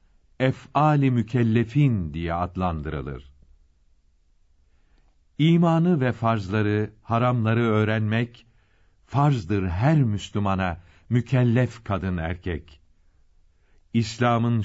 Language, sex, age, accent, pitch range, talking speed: Turkish, male, 60-79, native, 85-120 Hz, 65 wpm